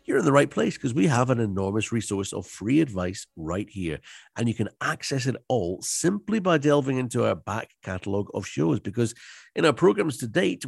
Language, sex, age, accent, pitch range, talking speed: English, male, 50-69, British, 100-140 Hz, 210 wpm